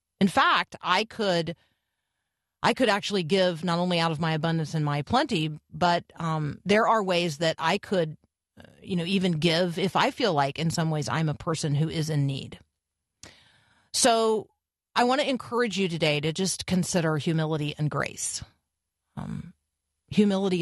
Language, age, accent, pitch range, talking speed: English, 40-59, American, 140-180 Hz, 170 wpm